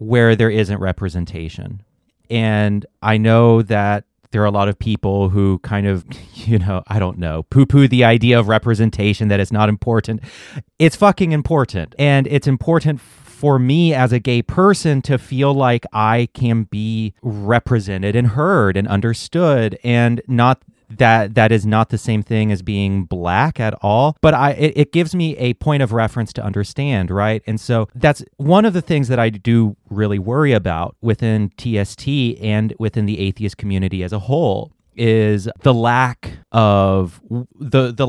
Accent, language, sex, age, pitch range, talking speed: American, English, male, 30-49, 105-135 Hz, 175 wpm